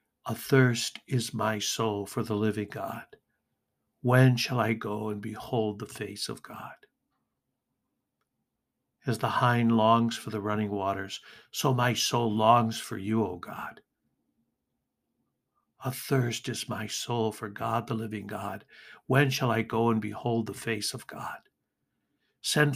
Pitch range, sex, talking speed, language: 105-120 Hz, male, 150 wpm, English